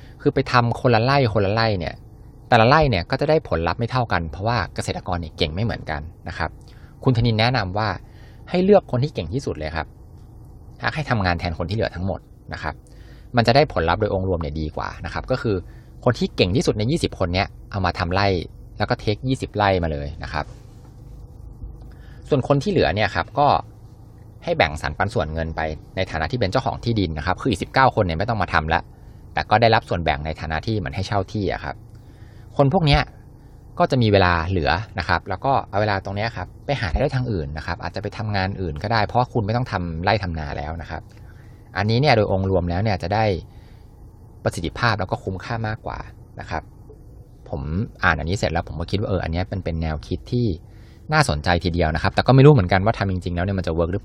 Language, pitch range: Thai, 90-115 Hz